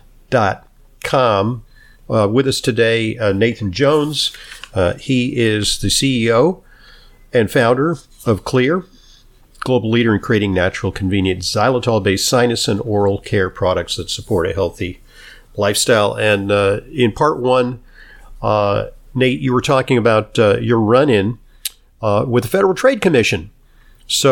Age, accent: 50-69, American